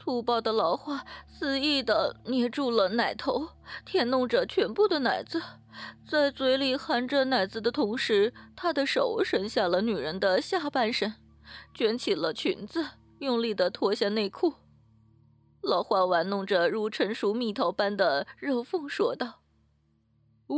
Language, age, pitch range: Chinese, 20-39, 200-295 Hz